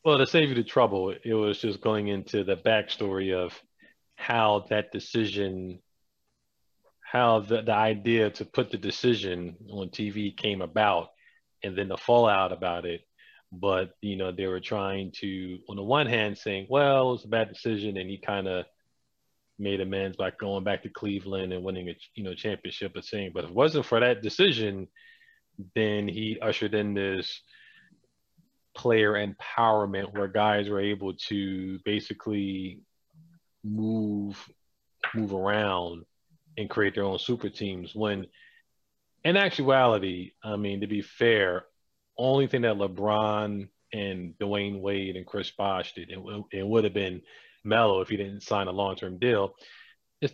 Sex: male